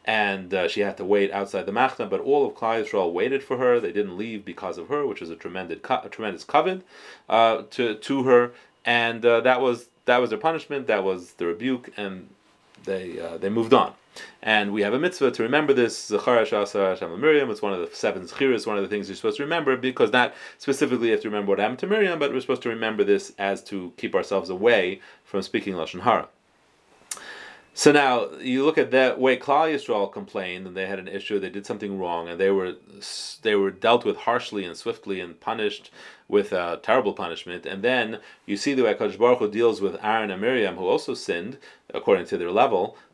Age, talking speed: 30-49, 225 wpm